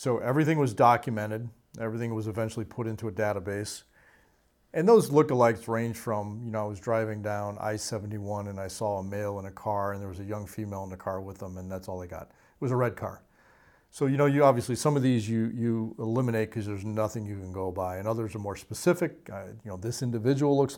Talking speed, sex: 230 wpm, male